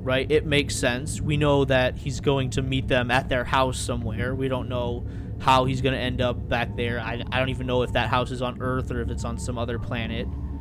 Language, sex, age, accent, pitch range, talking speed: English, male, 20-39, American, 105-140 Hz, 255 wpm